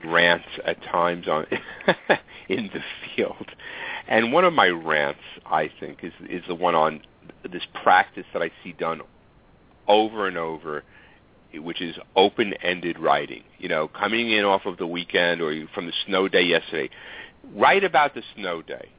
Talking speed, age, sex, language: 160 wpm, 50-69, male, English